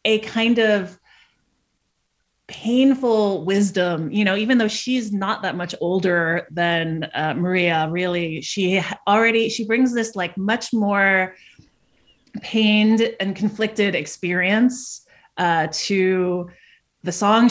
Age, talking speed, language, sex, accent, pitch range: 30-49, 115 wpm, English, female, American, 175-210 Hz